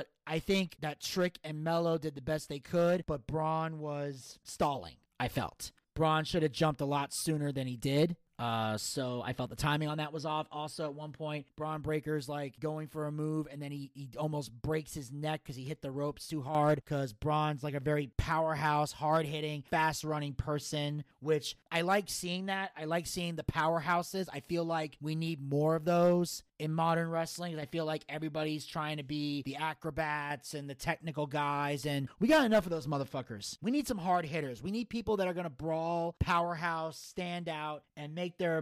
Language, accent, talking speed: English, American, 210 wpm